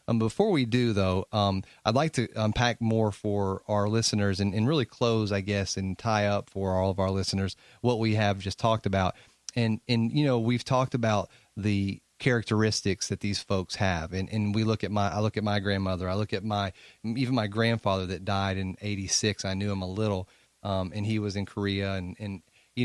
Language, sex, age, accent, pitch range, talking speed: English, male, 30-49, American, 100-120 Hz, 220 wpm